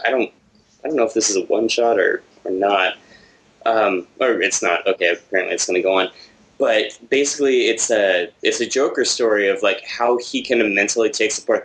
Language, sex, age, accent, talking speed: English, male, 20-39, American, 210 wpm